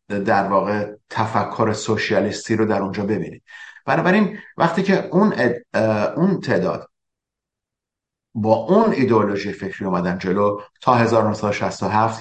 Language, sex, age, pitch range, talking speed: Persian, male, 50-69, 95-120 Hz, 115 wpm